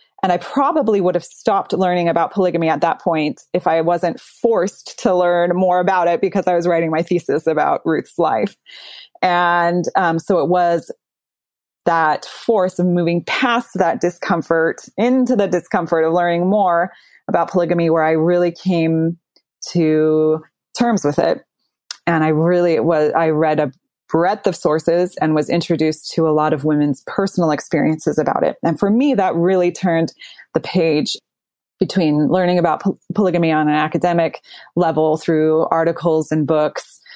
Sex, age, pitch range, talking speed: female, 20-39, 155-180 Hz, 160 wpm